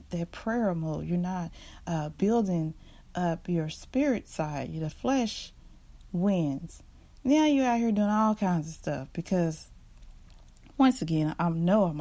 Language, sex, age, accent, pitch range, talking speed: English, female, 40-59, American, 155-205 Hz, 145 wpm